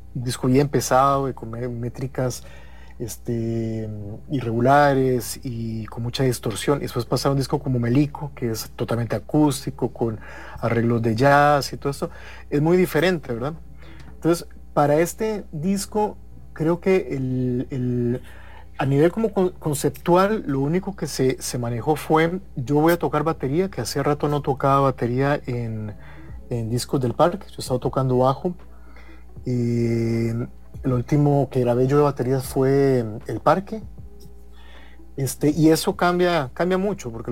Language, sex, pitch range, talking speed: English, male, 120-150 Hz, 145 wpm